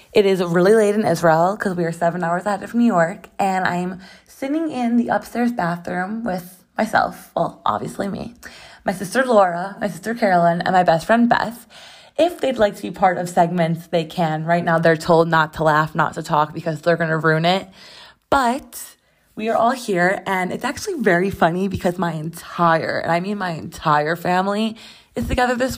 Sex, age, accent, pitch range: female, 20-39, American, 170-230 Hz